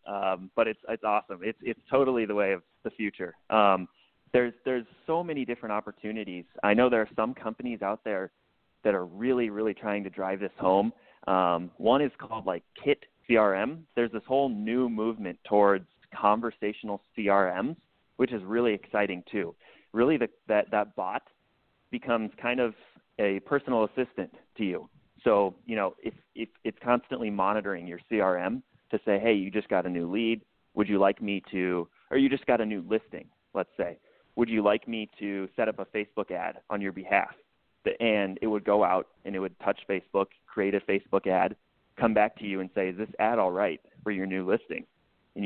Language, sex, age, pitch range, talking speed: English, male, 30-49, 95-115 Hz, 195 wpm